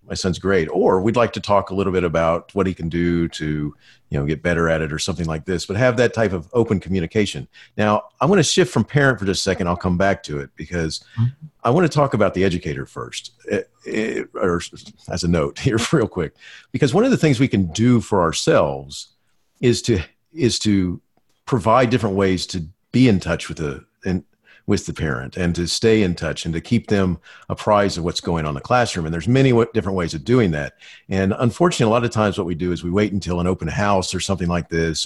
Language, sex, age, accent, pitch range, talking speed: English, male, 40-59, American, 85-115 Hz, 240 wpm